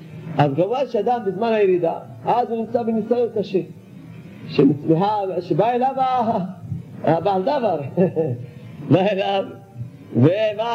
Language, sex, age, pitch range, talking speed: Hebrew, male, 50-69, 170-245 Hz, 85 wpm